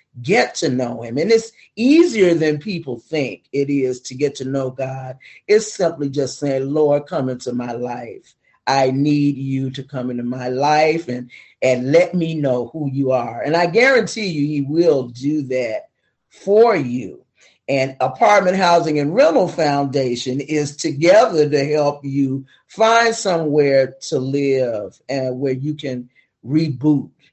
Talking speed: 160 wpm